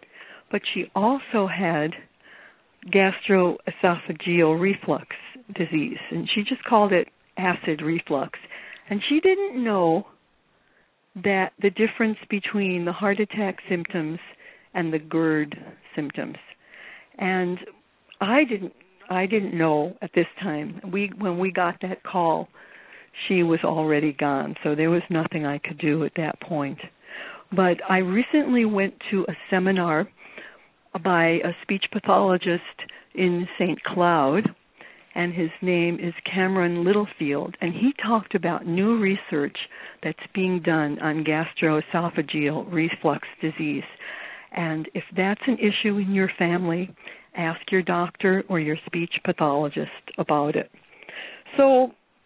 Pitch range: 165-205 Hz